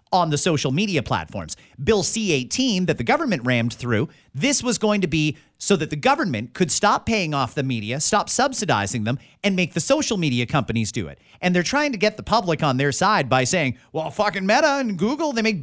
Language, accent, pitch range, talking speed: English, American, 130-215 Hz, 220 wpm